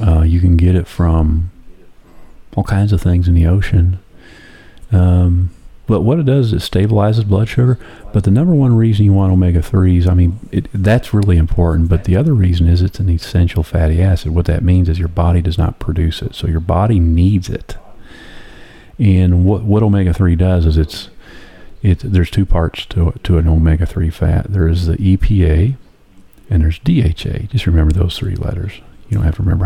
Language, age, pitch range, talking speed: English, 40-59, 85-100 Hz, 190 wpm